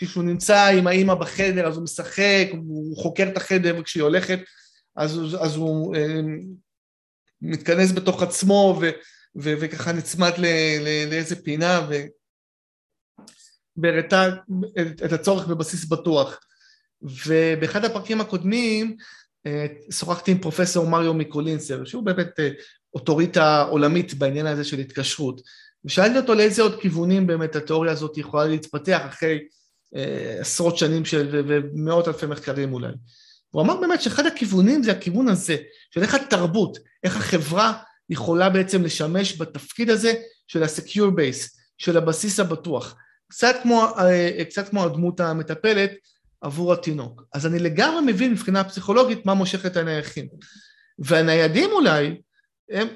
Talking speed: 125 wpm